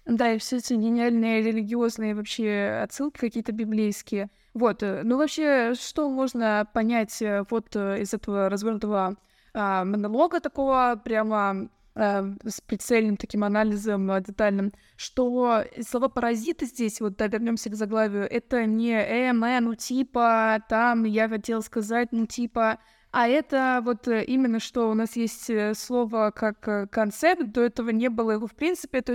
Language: Russian